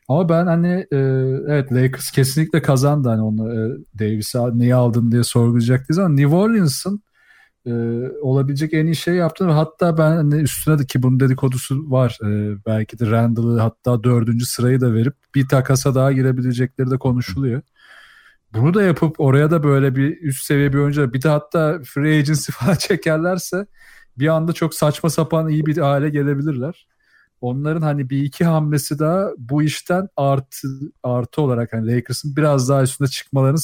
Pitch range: 125-150 Hz